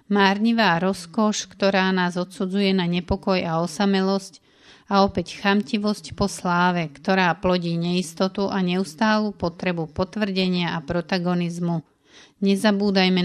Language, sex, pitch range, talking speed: Slovak, female, 175-200 Hz, 110 wpm